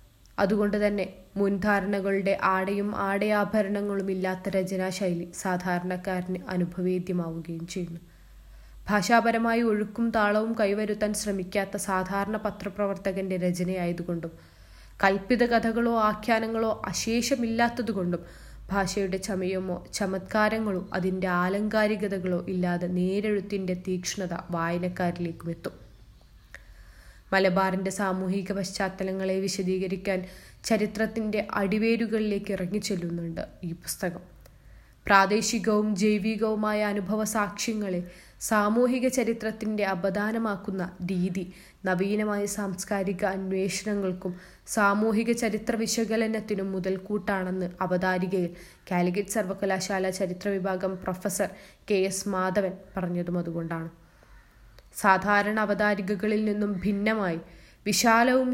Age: 20-39